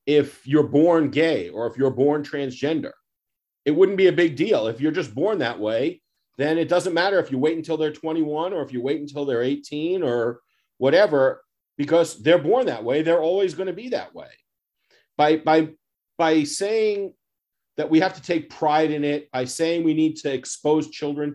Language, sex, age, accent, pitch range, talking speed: English, male, 40-59, American, 135-165 Hz, 195 wpm